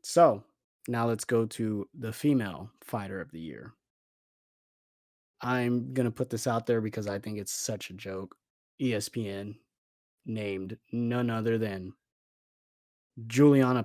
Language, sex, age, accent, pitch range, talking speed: English, male, 20-39, American, 105-125 Hz, 135 wpm